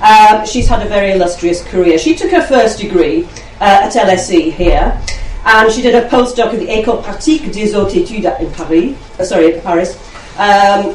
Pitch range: 180-245 Hz